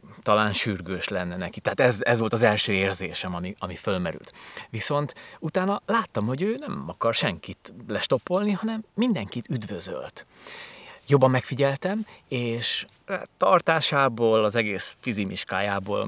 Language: Hungarian